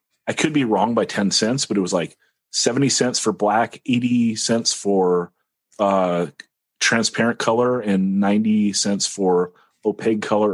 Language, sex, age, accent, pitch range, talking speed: English, male, 30-49, American, 100-125 Hz, 155 wpm